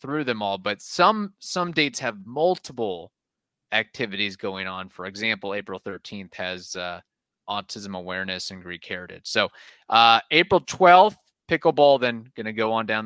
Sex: male